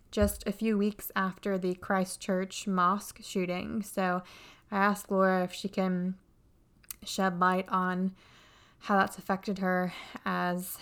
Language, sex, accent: English, female, American